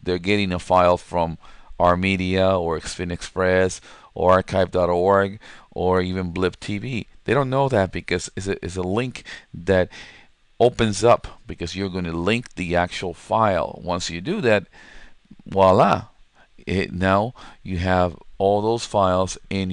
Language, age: English, 50-69